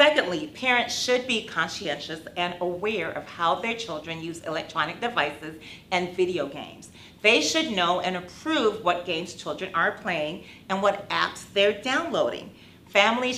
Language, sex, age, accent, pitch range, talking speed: English, female, 40-59, American, 165-210 Hz, 150 wpm